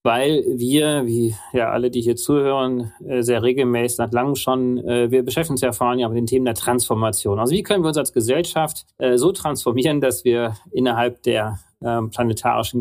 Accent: German